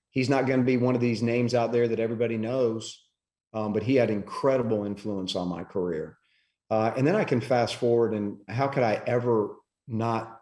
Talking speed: 200 wpm